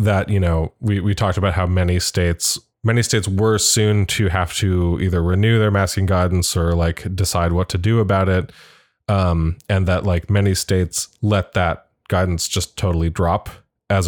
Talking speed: 185 wpm